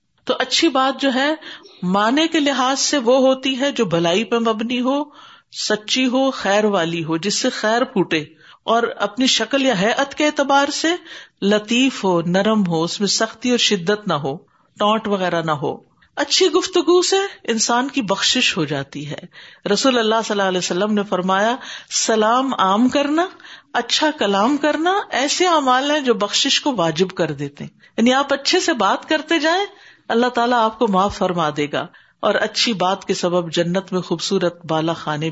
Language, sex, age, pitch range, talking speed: Urdu, female, 50-69, 185-270 Hz, 180 wpm